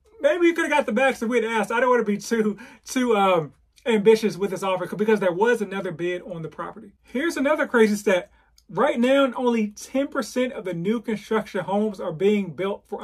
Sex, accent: male, American